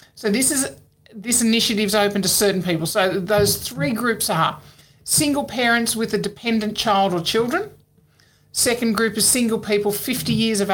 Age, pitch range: 50-69, 175-220 Hz